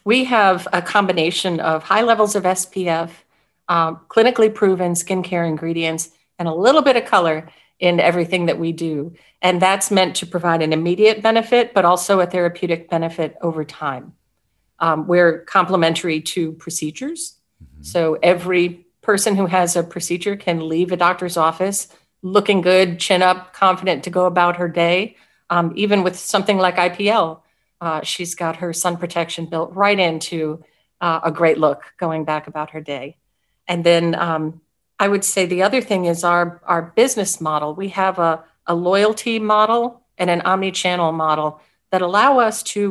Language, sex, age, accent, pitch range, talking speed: English, female, 40-59, American, 165-200 Hz, 165 wpm